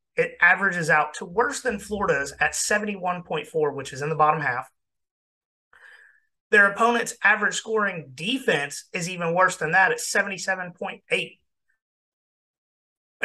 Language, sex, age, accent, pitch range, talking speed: English, male, 30-49, American, 145-205 Hz, 120 wpm